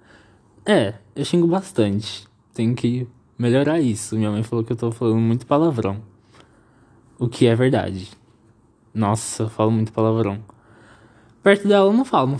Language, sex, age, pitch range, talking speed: Portuguese, male, 20-39, 115-160 Hz, 155 wpm